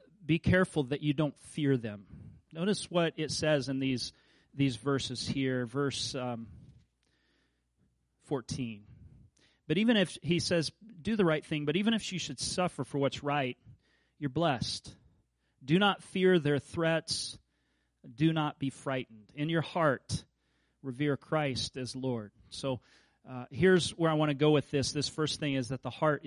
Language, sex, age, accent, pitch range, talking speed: English, male, 40-59, American, 125-150 Hz, 165 wpm